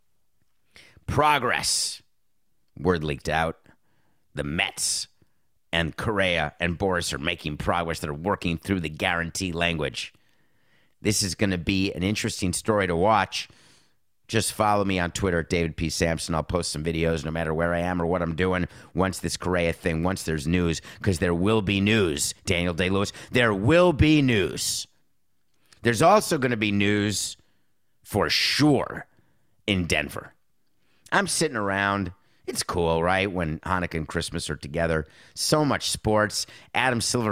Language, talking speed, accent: English, 155 wpm, American